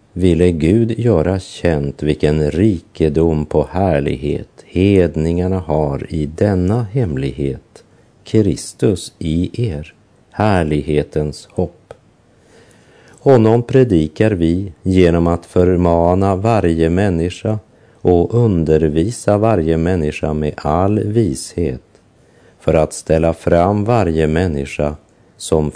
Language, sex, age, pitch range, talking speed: French, male, 50-69, 80-105 Hz, 95 wpm